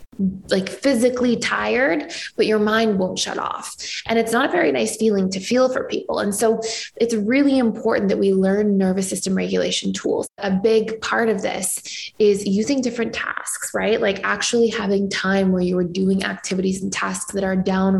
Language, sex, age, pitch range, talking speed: English, female, 20-39, 195-230 Hz, 185 wpm